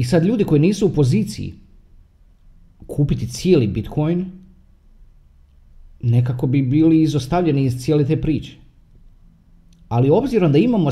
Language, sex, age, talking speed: Croatian, male, 40-59, 120 wpm